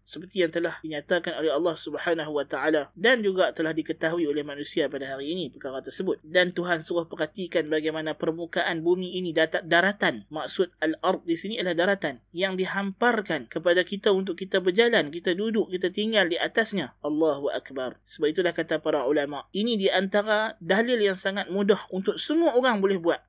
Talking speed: 165 wpm